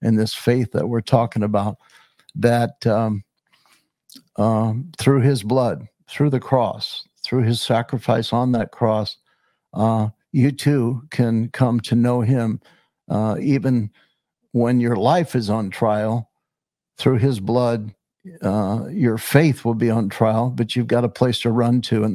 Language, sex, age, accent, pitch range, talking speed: English, male, 60-79, American, 115-130 Hz, 155 wpm